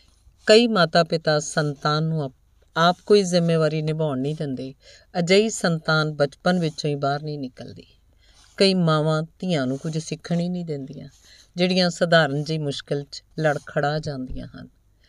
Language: Punjabi